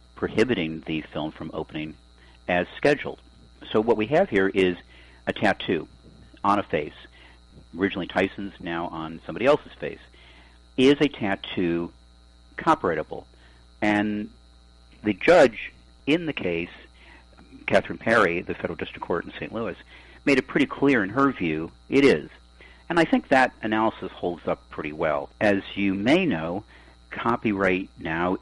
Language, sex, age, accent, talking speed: English, male, 50-69, American, 145 wpm